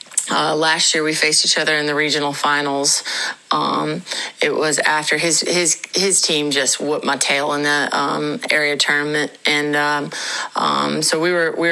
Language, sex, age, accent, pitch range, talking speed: English, female, 30-49, American, 145-160 Hz, 180 wpm